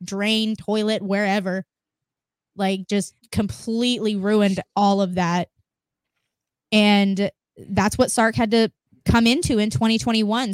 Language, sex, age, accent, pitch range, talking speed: English, female, 10-29, American, 195-220 Hz, 115 wpm